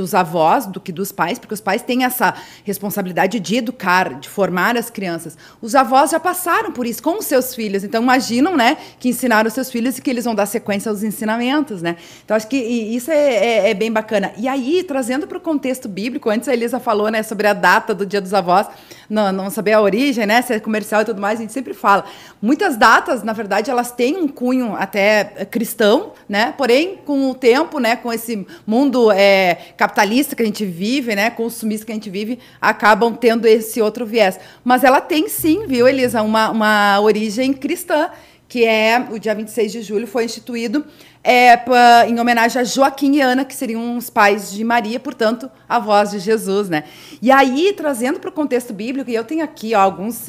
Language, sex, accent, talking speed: Portuguese, female, Brazilian, 210 wpm